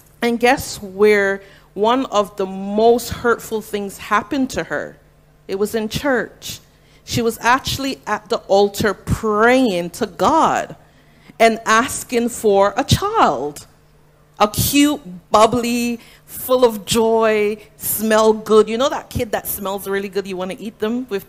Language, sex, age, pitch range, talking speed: English, female, 40-59, 210-265 Hz, 145 wpm